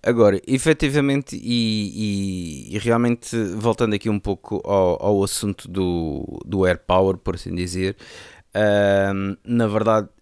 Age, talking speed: 20-39, 135 wpm